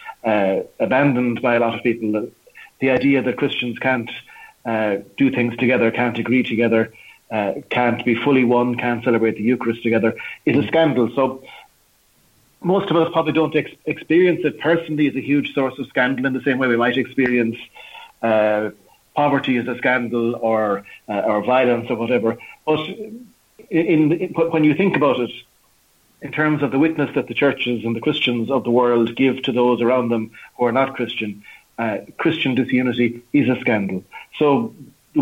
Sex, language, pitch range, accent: male, English, 115-145 Hz, Irish